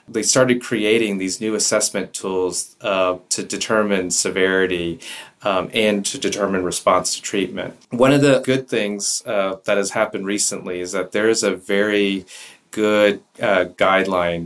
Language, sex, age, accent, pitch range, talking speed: English, male, 30-49, American, 90-105 Hz, 155 wpm